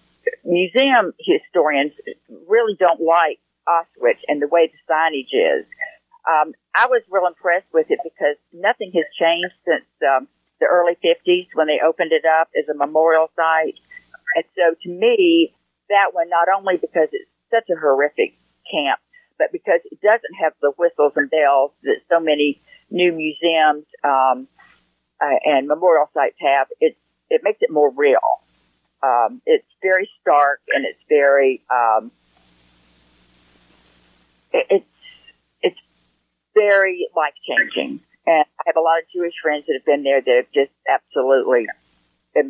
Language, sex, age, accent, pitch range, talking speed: English, female, 50-69, American, 145-210 Hz, 150 wpm